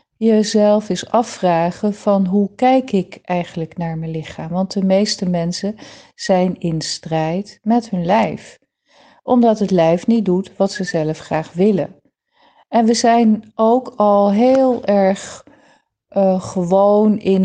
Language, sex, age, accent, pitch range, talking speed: Dutch, female, 40-59, Dutch, 175-215 Hz, 140 wpm